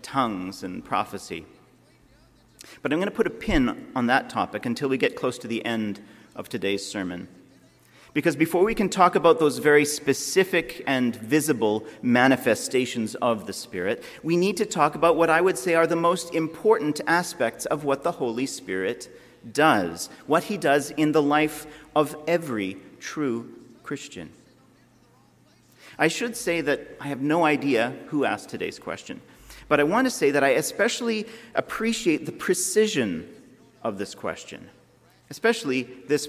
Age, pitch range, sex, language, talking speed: 40-59, 120-175 Hz, male, English, 160 wpm